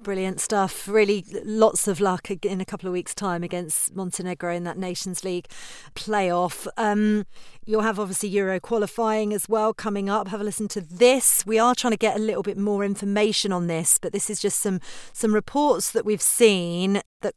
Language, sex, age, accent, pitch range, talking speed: English, female, 40-59, British, 185-215 Hz, 195 wpm